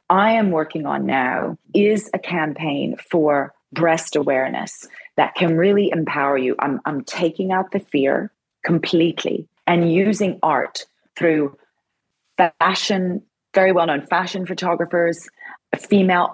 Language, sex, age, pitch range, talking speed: English, female, 30-49, 160-195 Hz, 120 wpm